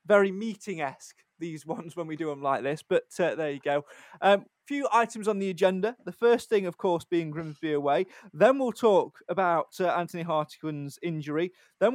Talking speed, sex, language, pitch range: 190 wpm, male, English, 150-190 Hz